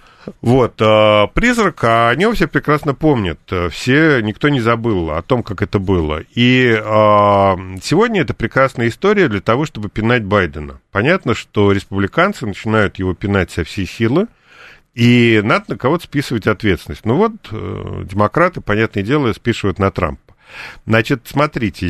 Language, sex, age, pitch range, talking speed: Russian, male, 40-59, 95-130 Hz, 140 wpm